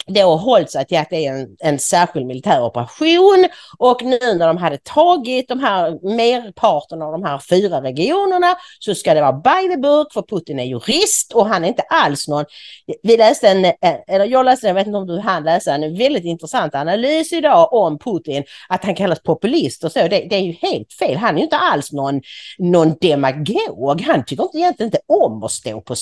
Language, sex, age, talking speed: English, female, 40-59, 205 wpm